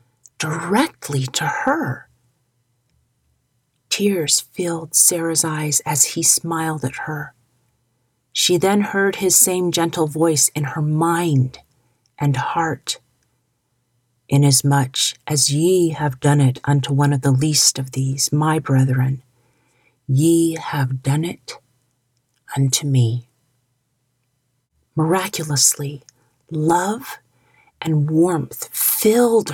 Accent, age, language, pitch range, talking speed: American, 40-59, English, 125-170 Hz, 100 wpm